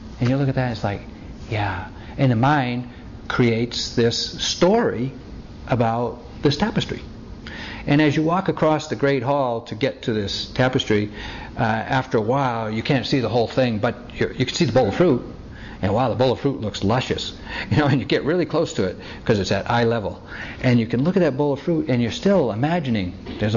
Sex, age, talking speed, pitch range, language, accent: male, 60-79, 220 wpm, 110-150 Hz, English, American